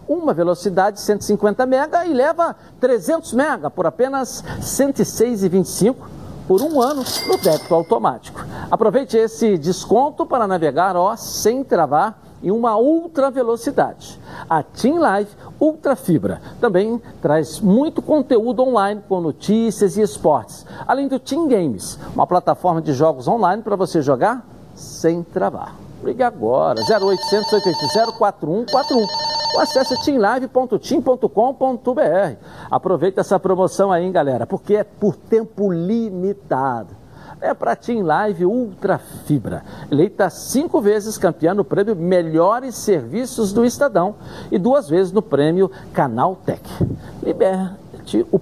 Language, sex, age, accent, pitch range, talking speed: Portuguese, male, 60-79, Brazilian, 180-255 Hz, 125 wpm